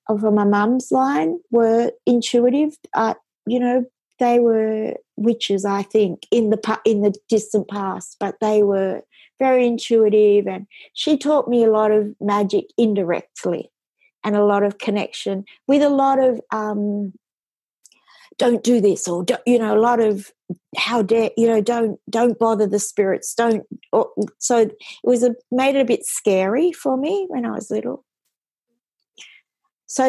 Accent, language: Australian, English